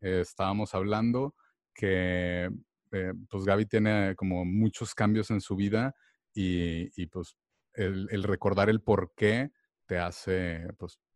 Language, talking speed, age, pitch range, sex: Spanish, 140 wpm, 30-49, 95-120 Hz, male